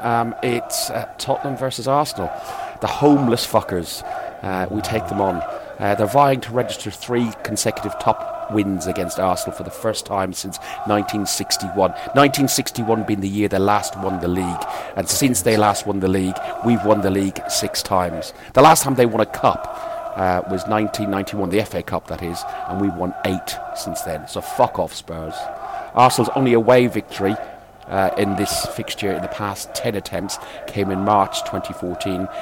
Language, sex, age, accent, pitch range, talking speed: English, male, 40-59, British, 100-135 Hz, 175 wpm